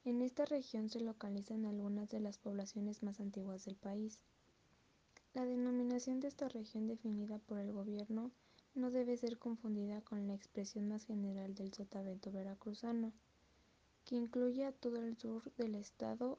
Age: 10-29